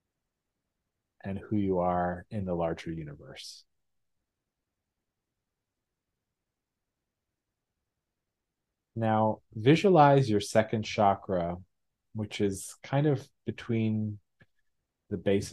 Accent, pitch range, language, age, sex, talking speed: American, 90-110 Hz, English, 40-59, male, 75 wpm